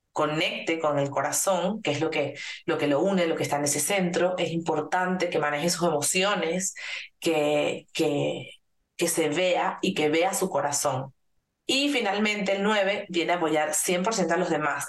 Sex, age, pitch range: female, 30-49, 155-185 Hz